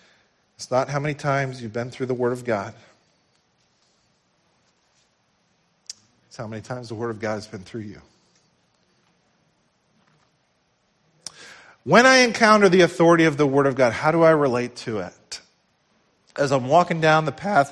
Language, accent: English, American